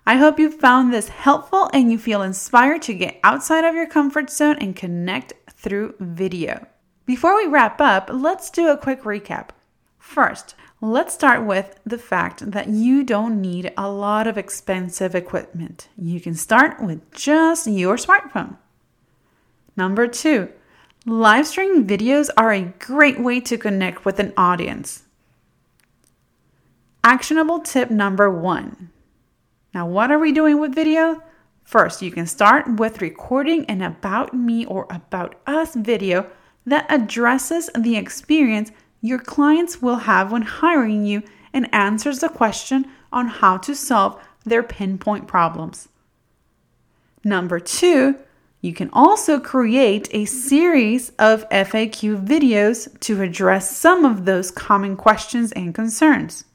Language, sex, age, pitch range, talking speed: English, female, 30-49, 195-285 Hz, 140 wpm